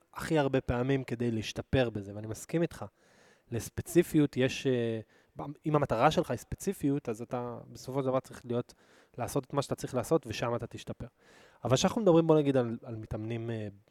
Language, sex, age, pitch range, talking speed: Hebrew, male, 20-39, 110-130 Hz, 170 wpm